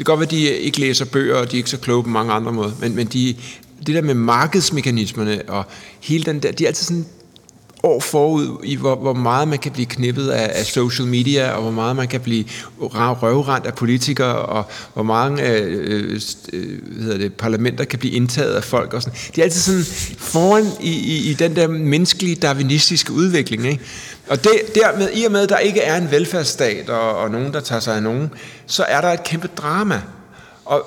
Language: Danish